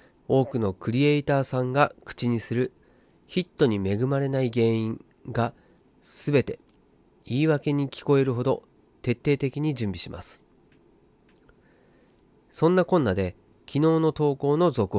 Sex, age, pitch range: male, 40-59, 110-155 Hz